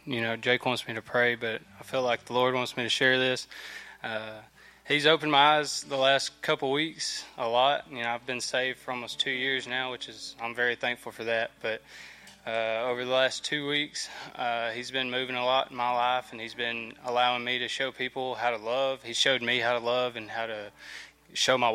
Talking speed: 230 wpm